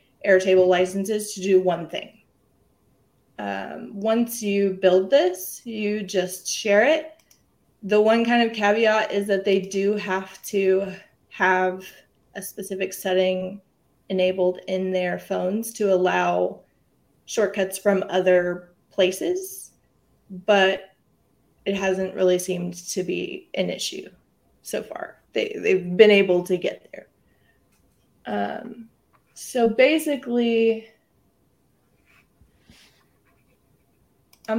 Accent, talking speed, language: American, 110 wpm, English